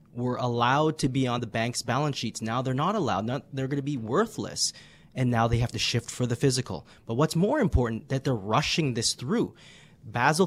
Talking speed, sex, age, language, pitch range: 210 wpm, male, 30-49, English, 115-150 Hz